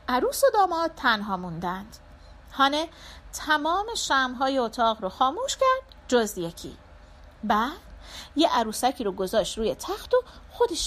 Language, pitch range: Persian, 245-375 Hz